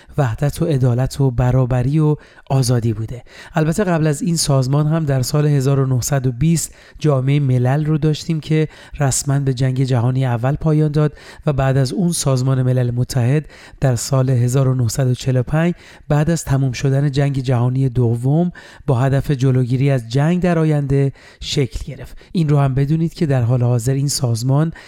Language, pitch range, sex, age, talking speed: Persian, 130-155 Hz, male, 40-59, 155 wpm